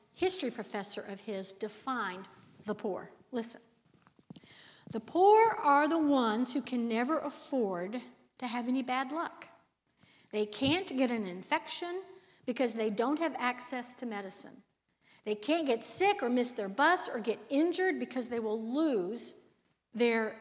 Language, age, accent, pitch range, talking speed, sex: English, 60-79, American, 215-300 Hz, 145 wpm, female